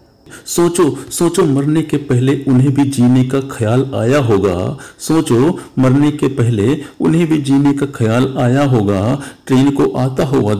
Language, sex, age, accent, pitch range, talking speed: Hindi, male, 50-69, native, 115-145 Hz, 155 wpm